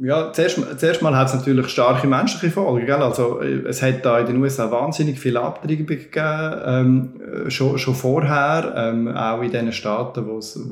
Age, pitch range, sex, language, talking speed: 20-39, 115-140 Hz, male, German, 180 wpm